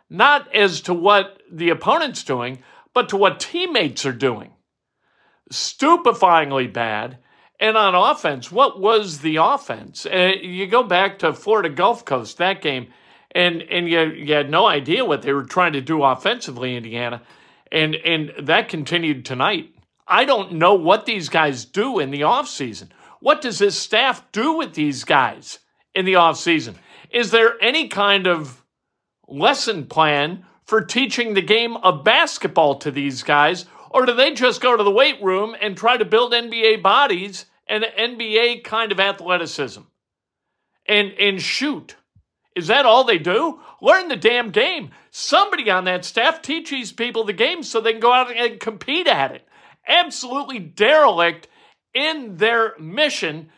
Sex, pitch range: male, 165-240 Hz